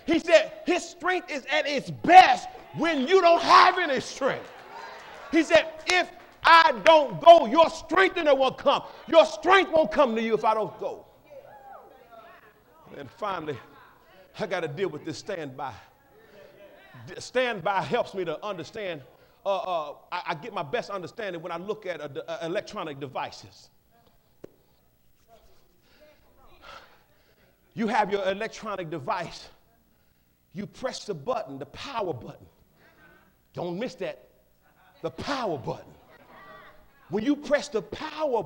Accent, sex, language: American, male, English